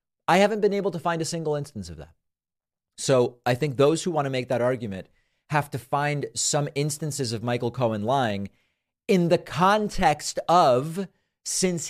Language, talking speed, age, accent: English, 175 wpm, 40-59, American